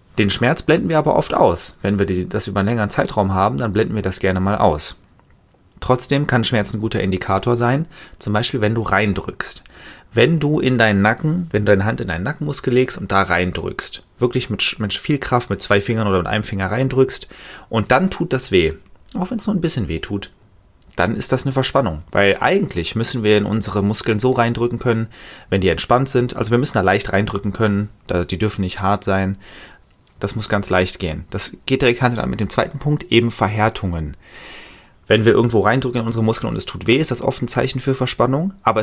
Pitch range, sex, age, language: 100-125 Hz, male, 30-49, German